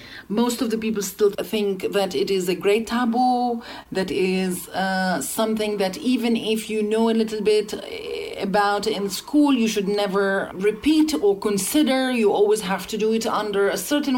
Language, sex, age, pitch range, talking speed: German, female, 40-59, 195-230 Hz, 180 wpm